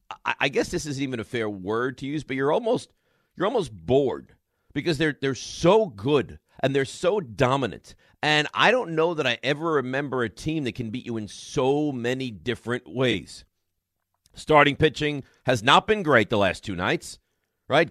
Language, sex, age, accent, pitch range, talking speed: English, male, 40-59, American, 115-150 Hz, 185 wpm